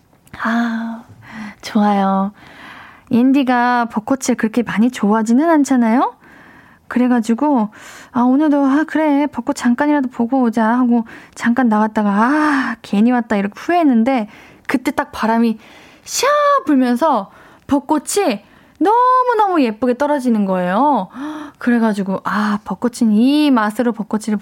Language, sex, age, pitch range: Korean, female, 10-29, 220-295 Hz